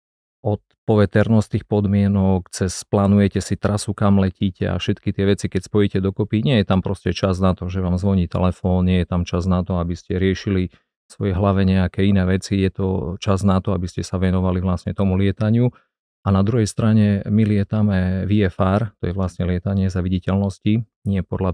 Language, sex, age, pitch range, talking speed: Slovak, male, 40-59, 90-105 Hz, 190 wpm